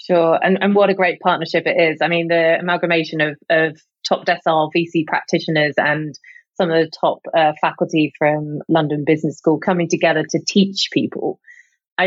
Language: English